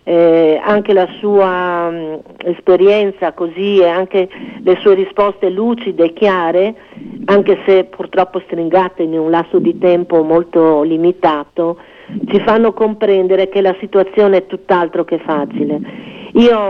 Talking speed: 135 wpm